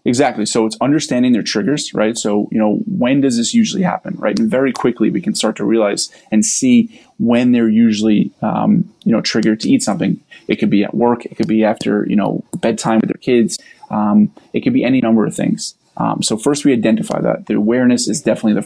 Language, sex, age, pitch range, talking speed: English, male, 20-39, 110-125 Hz, 225 wpm